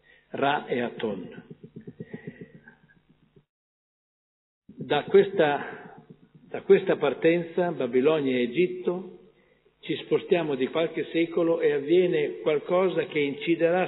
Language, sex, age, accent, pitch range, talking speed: Italian, male, 50-69, native, 140-195 Hz, 90 wpm